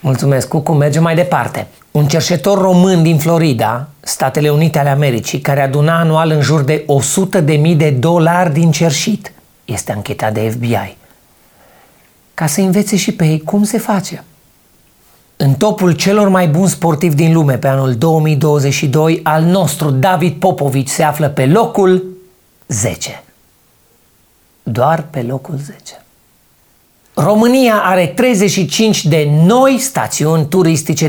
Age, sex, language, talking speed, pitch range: 40-59, male, Romanian, 135 wpm, 140-185 Hz